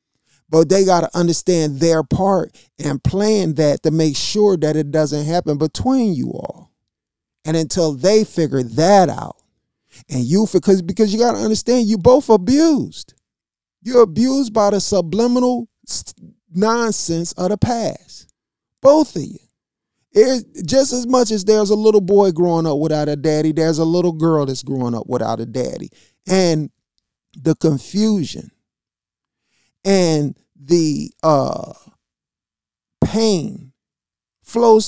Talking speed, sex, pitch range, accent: 140 wpm, male, 160-225 Hz, American